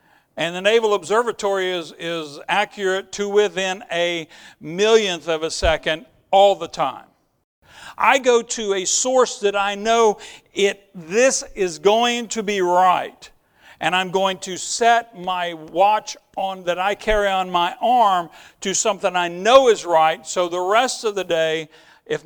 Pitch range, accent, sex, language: 175-225 Hz, American, male, English